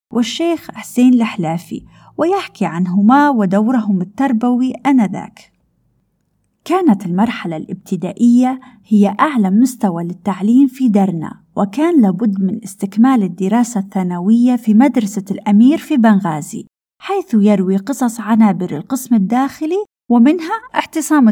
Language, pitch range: Arabic, 195-250 Hz